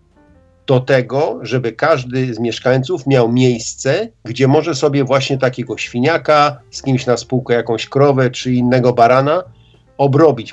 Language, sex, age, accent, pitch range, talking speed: Polish, male, 50-69, native, 115-135 Hz, 135 wpm